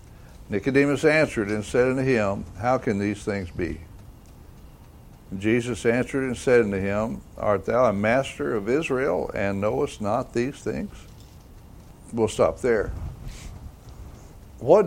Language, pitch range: English, 105-135 Hz